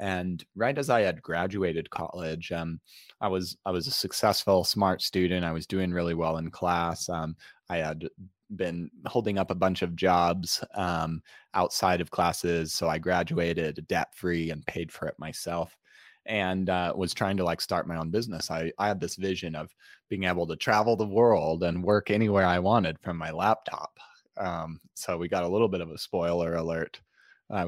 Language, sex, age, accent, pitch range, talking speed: English, male, 20-39, American, 85-100 Hz, 190 wpm